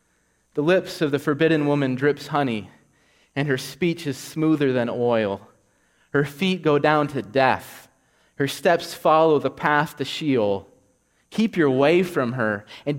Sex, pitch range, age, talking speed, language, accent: male, 105-155 Hz, 30-49, 155 wpm, English, American